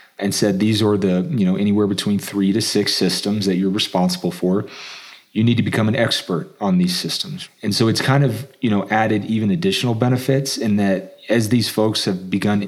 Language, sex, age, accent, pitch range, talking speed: English, male, 30-49, American, 100-130 Hz, 210 wpm